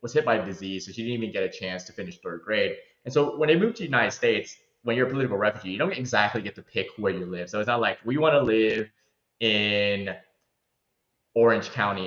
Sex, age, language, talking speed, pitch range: male, 20-39, English, 250 wpm, 95-125 Hz